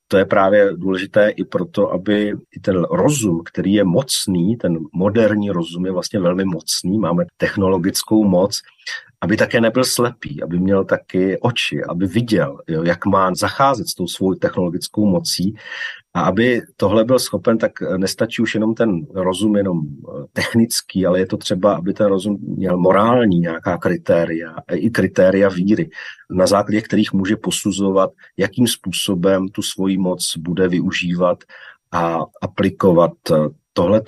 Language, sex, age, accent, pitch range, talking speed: Czech, male, 40-59, native, 90-105 Hz, 145 wpm